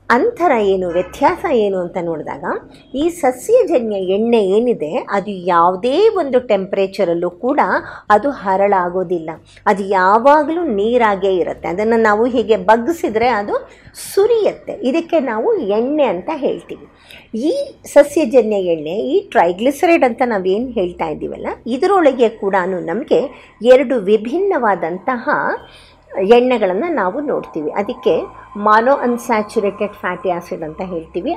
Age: 50-69